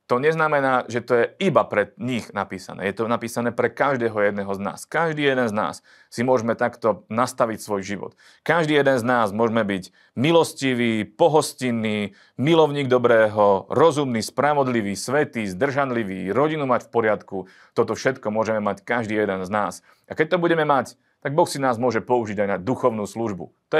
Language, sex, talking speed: Slovak, male, 175 wpm